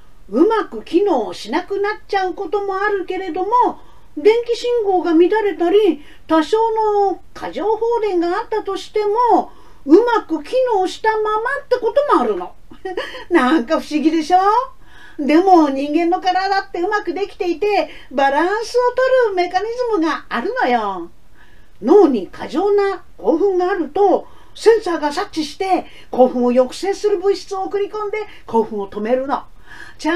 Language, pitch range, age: Japanese, 295-420 Hz, 40-59